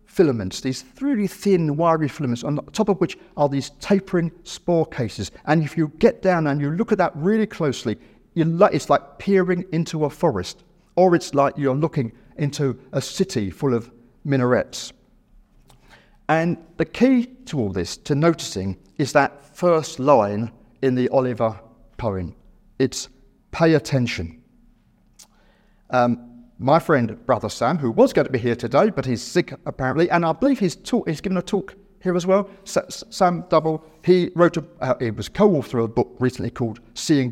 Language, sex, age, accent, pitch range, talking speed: English, male, 50-69, British, 120-170 Hz, 175 wpm